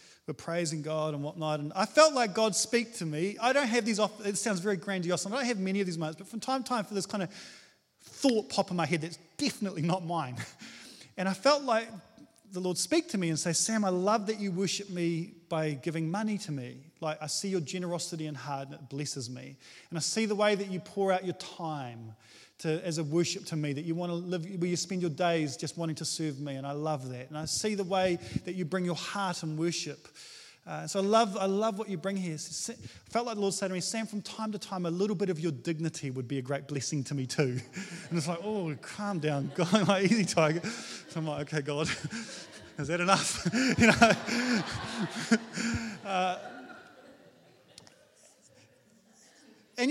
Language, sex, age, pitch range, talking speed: English, male, 30-49, 155-210 Hz, 225 wpm